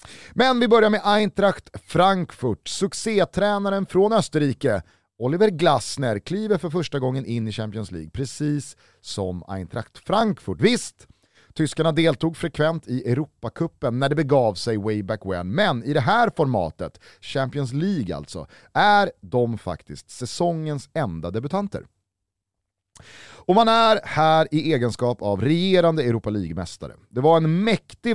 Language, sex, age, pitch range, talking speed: Swedish, male, 30-49, 110-170 Hz, 135 wpm